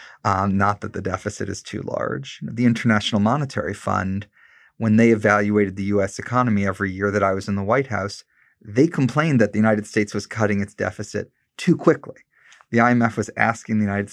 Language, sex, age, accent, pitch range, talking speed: English, male, 30-49, American, 100-120 Hz, 190 wpm